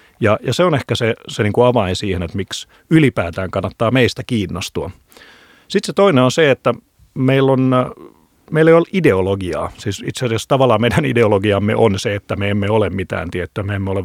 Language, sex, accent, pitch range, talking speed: Finnish, male, native, 100-130 Hz, 190 wpm